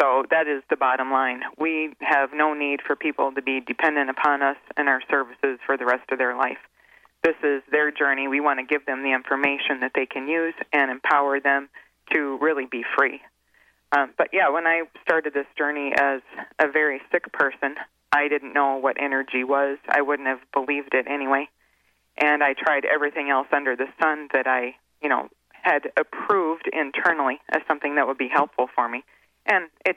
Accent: American